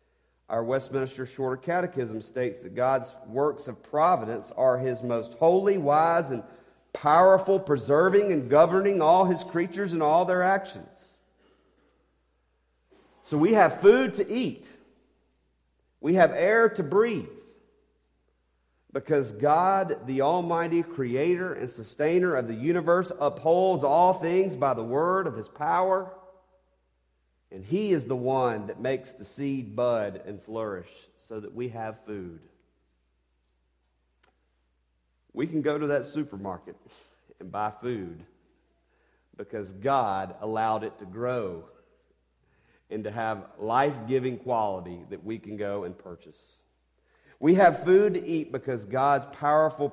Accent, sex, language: American, male, English